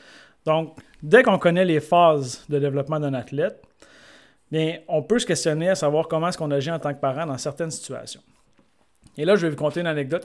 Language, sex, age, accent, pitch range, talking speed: French, male, 30-49, Canadian, 130-155 Hz, 210 wpm